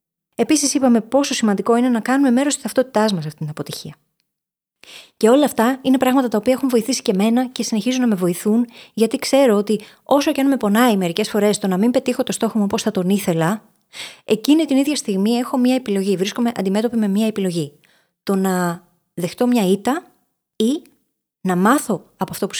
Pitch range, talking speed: 190-255 Hz, 195 wpm